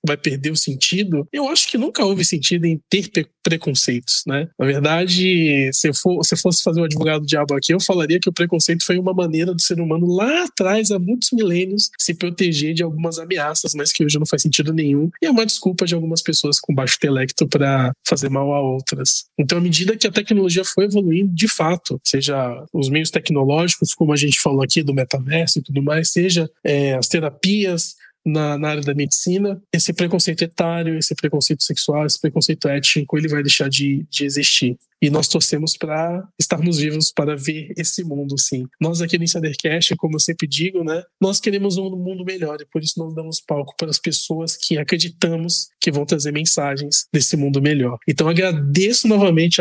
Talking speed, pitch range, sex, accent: 200 wpm, 150-180 Hz, male, Brazilian